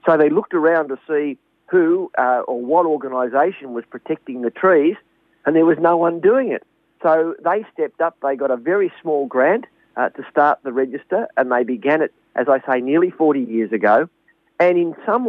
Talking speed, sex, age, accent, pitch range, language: 200 wpm, male, 50-69, Australian, 130-165 Hz, English